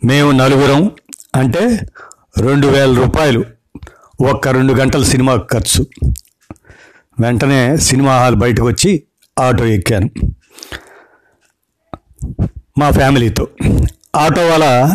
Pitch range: 120-140 Hz